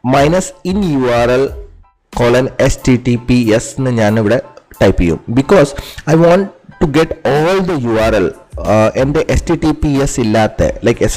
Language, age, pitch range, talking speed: Malayalam, 30-49, 110-140 Hz, 185 wpm